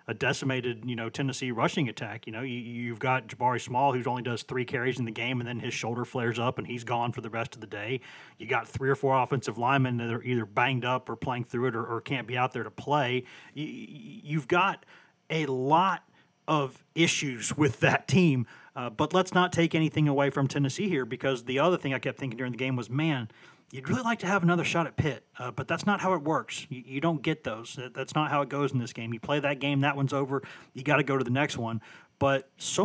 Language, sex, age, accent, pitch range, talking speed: English, male, 30-49, American, 125-155 Hz, 255 wpm